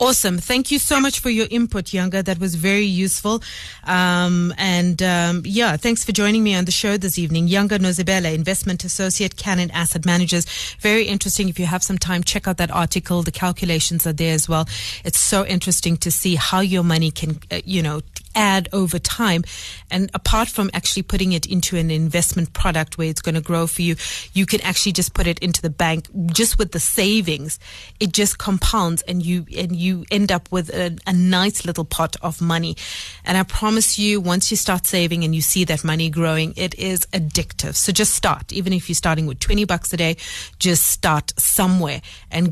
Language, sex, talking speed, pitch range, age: English, female, 205 wpm, 170-205 Hz, 30-49